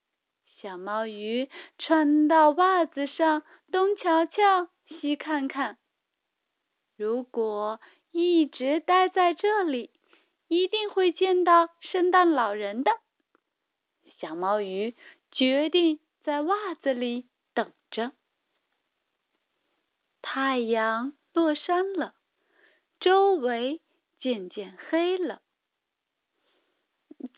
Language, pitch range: Chinese, 260-350 Hz